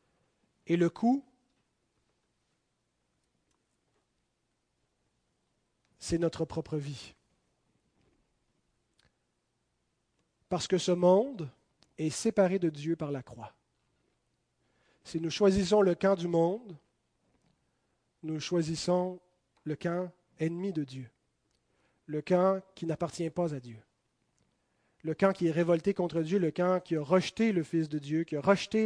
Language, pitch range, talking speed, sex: French, 155-195 Hz, 120 wpm, male